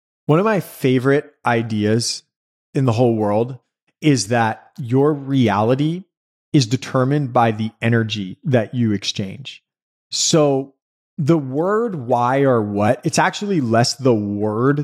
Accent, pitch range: American, 115-145 Hz